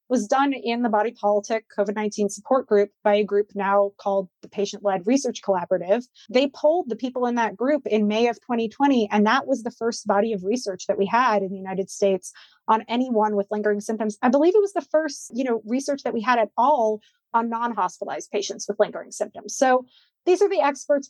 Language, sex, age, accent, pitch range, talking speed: English, female, 30-49, American, 205-245 Hz, 210 wpm